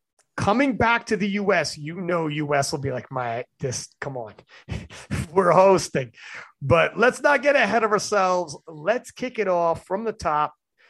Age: 30-49